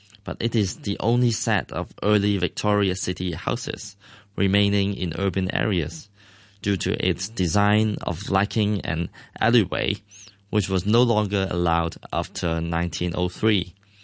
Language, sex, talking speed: English, male, 130 wpm